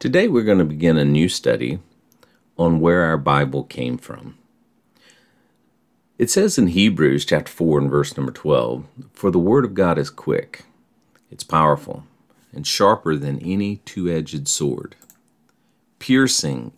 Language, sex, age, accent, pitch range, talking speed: English, male, 50-69, American, 75-95 Hz, 145 wpm